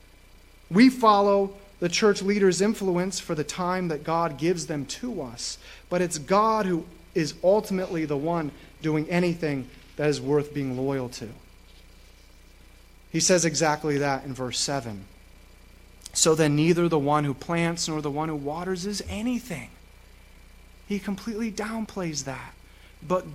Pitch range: 130-200 Hz